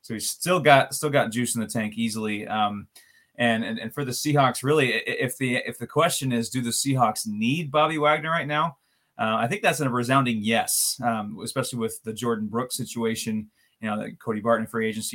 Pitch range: 110-130 Hz